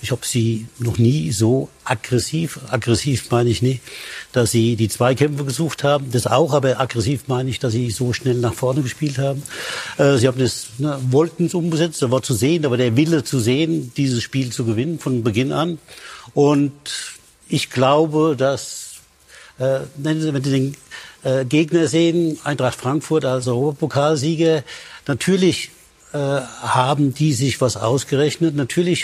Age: 60-79